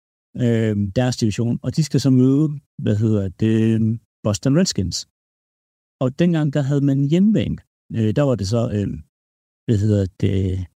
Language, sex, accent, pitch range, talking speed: Danish, male, native, 105-145 Hz, 160 wpm